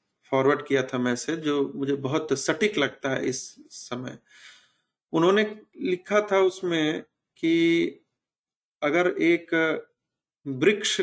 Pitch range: 130-170 Hz